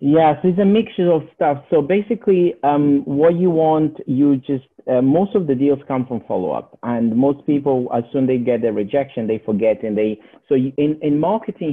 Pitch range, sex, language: 110-145 Hz, male, English